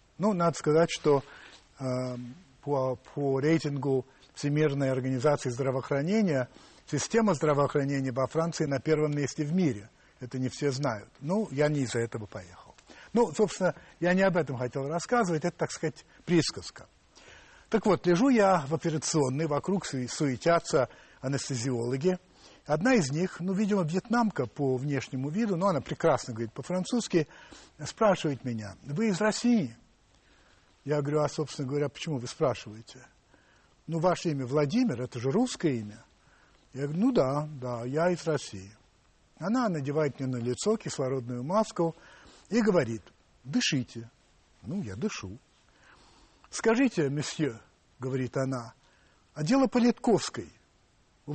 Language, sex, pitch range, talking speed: Russian, male, 130-175 Hz, 135 wpm